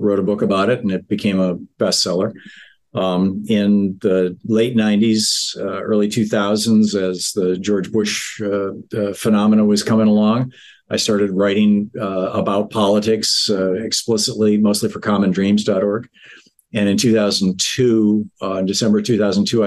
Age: 50-69